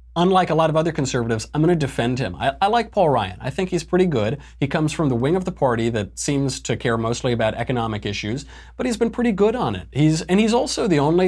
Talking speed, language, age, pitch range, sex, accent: 265 wpm, English, 30-49, 110-140 Hz, male, American